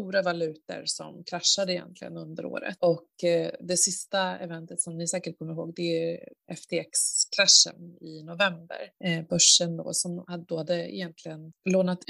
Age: 20-39